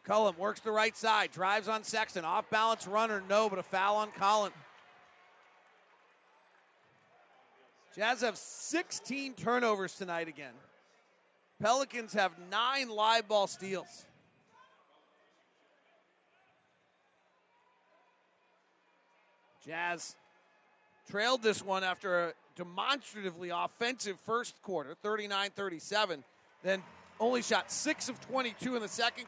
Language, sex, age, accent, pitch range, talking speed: English, male, 40-59, American, 190-230 Hz, 100 wpm